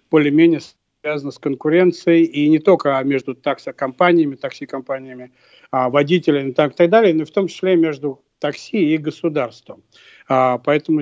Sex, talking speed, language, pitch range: male, 130 wpm, Russian, 145-170 Hz